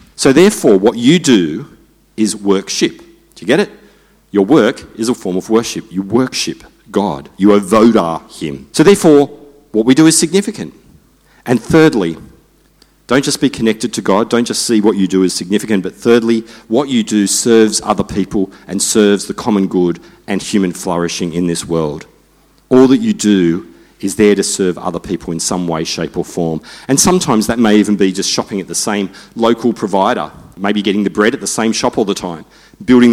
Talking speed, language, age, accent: 195 wpm, English, 40-59, Australian